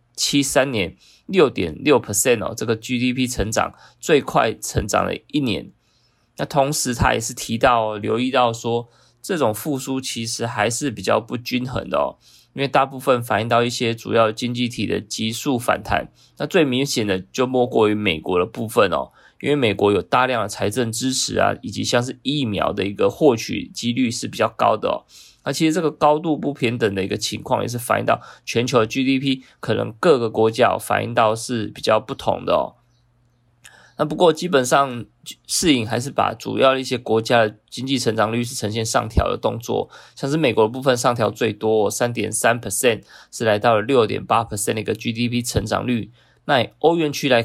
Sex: male